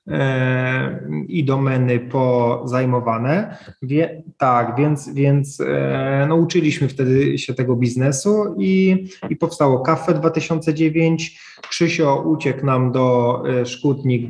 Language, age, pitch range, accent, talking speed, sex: Polish, 20-39, 120-145 Hz, native, 100 wpm, male